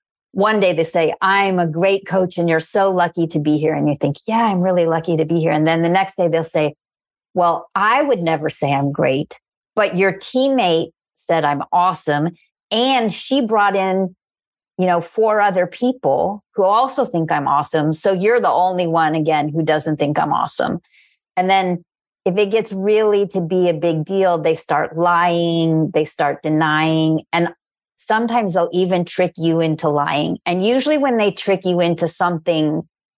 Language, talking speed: English, 185 wpm